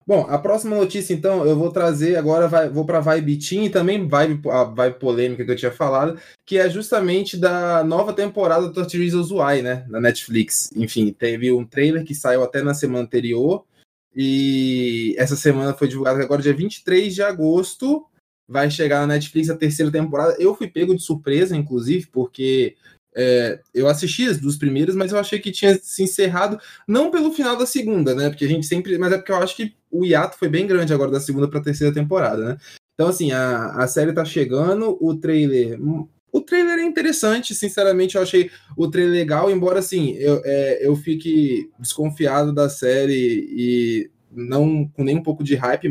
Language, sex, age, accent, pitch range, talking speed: Portuguese, male, 20-39, Brazilian, 135-185 Hz, 195 wpm